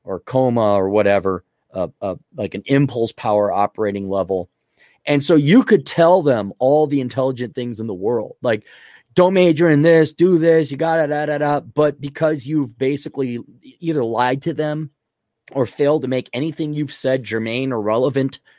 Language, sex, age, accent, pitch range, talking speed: English, male, 20-39, American, 115-155 Hz, 180 wpm